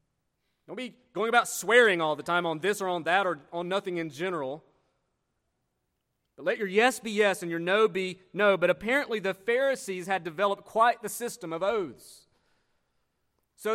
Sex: male